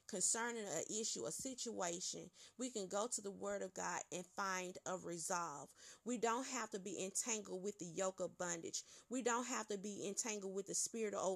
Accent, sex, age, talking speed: American, female, 30-49, 195 wpm